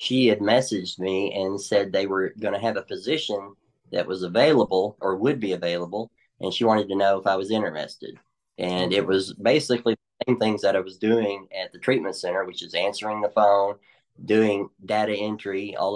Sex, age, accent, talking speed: male, 30-49, American, 200 wpm